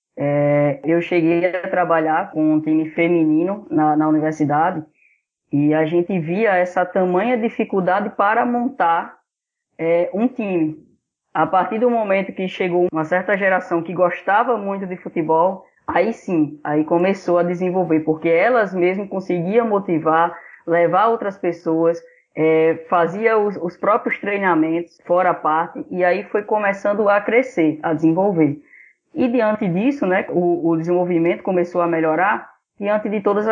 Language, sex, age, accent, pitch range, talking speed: Portuguese, female, 10-29, Brazilian, 160-190 Hz, 140 wpm